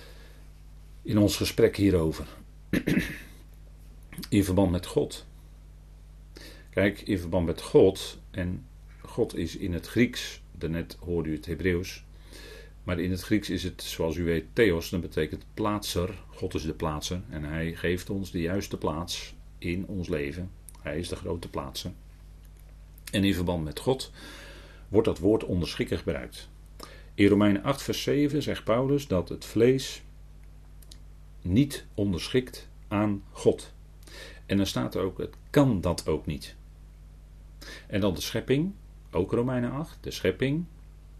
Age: 40-59